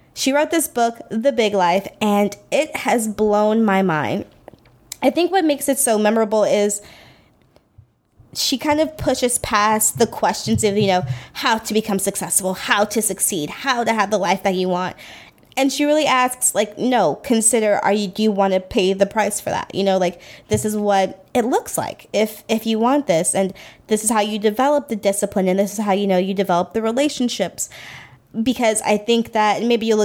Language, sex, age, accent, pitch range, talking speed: English, female, 20-39, American, 195-225 Hz, 205 wpm